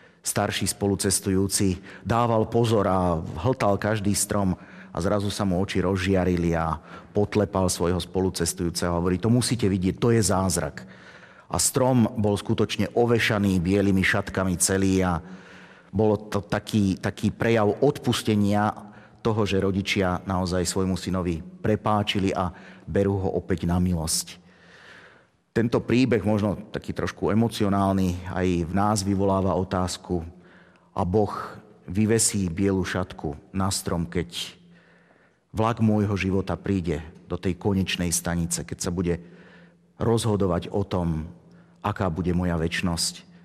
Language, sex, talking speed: Slovak, male, 125 wpm